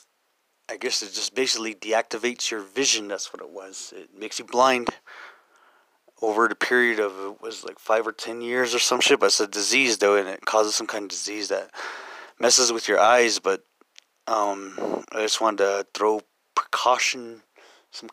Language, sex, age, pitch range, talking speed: English, male, 20-39, 105-125 Hz, 185 wpm